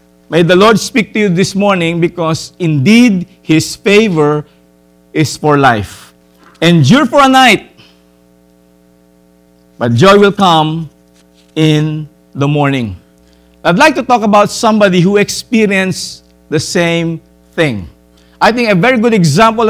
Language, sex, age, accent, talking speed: English, male, 50-69, Filipino, 130 wpm